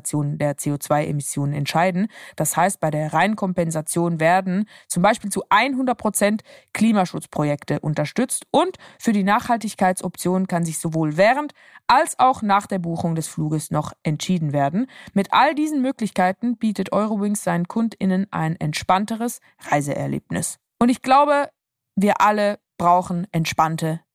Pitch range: 170-225 Hz